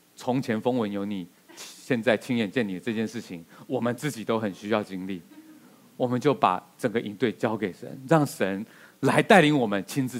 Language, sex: Chinese, male